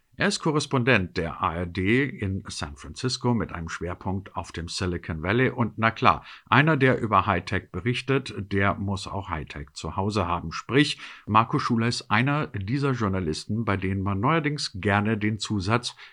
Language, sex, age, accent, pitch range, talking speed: German, male, 50-69, German, 90-120 Hz, 165 wpm